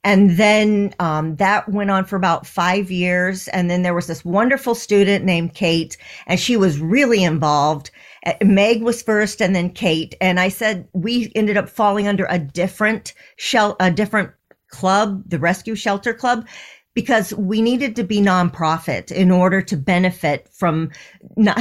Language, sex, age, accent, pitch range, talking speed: English, female, 40-59, American, 175-215 Hz, 165 wpm